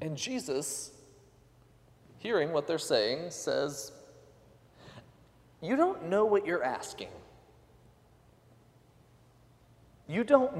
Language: English